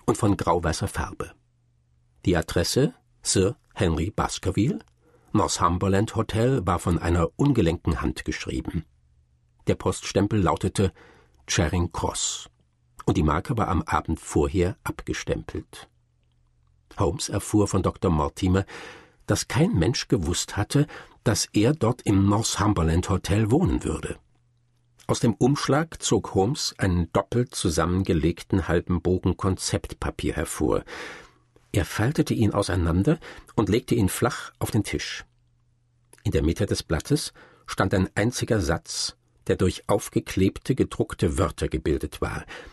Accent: German